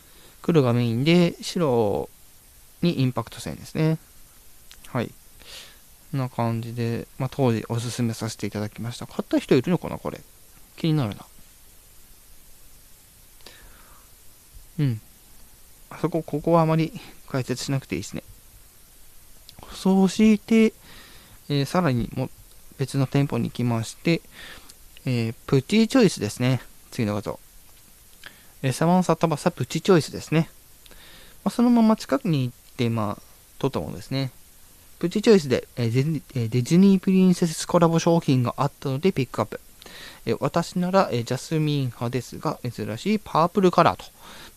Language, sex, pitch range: Japanese, male, 115-170 Hz